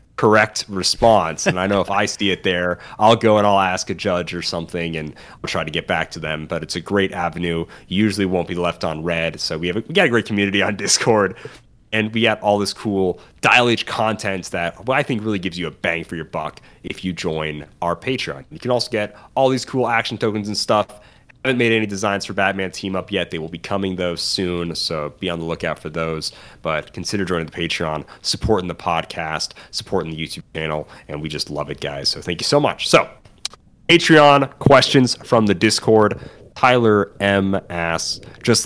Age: 30-49